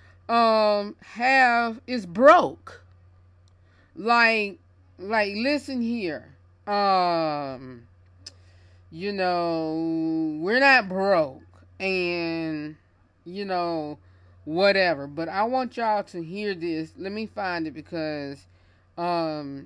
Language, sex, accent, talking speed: English, female, American, 95 wpm